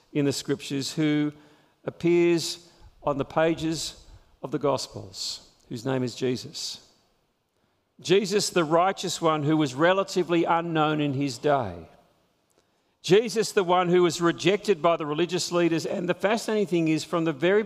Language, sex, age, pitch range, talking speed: English, male, 50-69, 140-190 Hz, 150 wpm